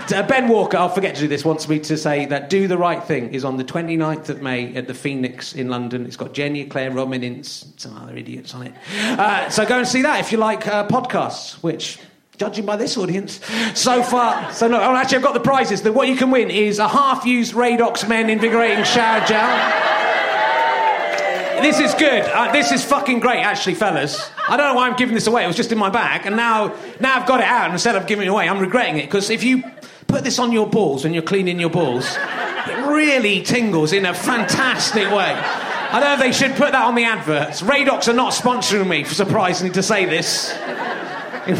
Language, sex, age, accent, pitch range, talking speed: English, male, 30-49, British, 180-245 Hz, 225 wpm